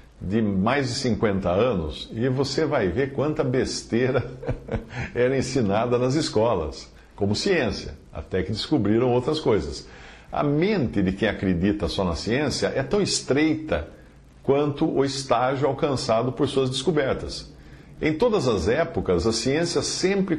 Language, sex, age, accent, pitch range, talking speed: Portuguese, male, 50-69, Brazilian, 95-145 Hz, 140 wpm